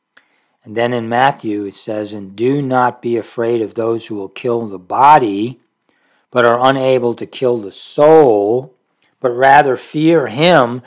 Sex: male